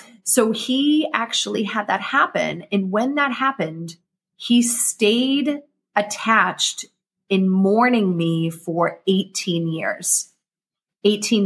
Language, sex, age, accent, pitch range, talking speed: English, female, 30-49, American, 175-210 Hz, 105 wpm